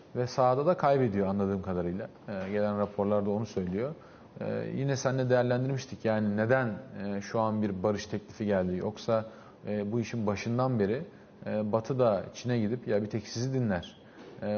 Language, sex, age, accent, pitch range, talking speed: Turkish, male, 40-59, native, 105-125 Hz, 170 wpm